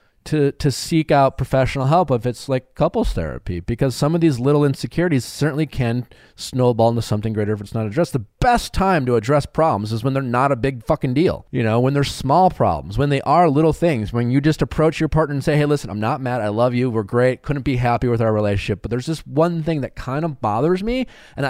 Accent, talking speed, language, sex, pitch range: American, 245 wpm, English, male, 120-150 Hz